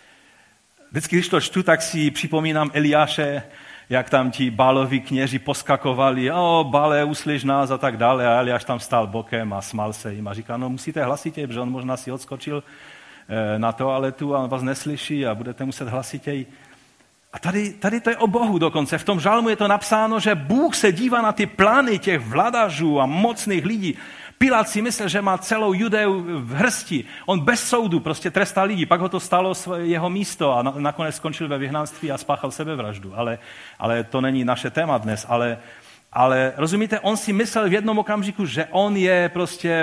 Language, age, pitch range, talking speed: Czech, 40-59, 130-190 Hz, 185 wpm